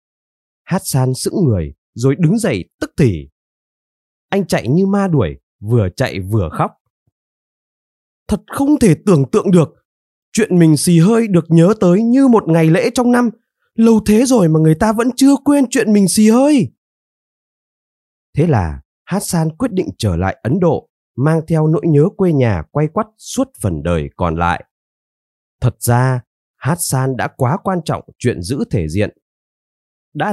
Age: 20-39